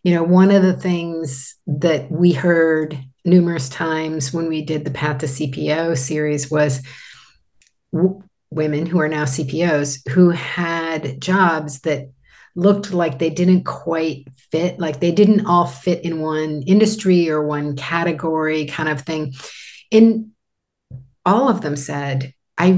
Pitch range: 140-170 Hz